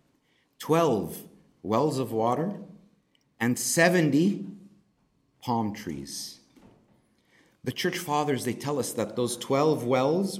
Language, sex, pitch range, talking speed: English, male, 115-155 Hz, 105 wpm